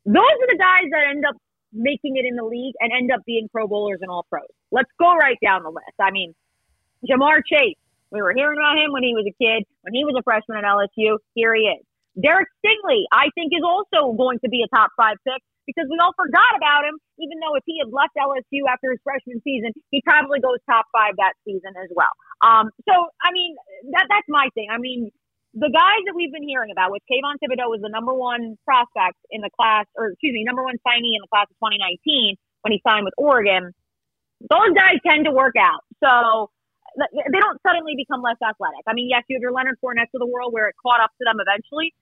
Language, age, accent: English, 30-49, American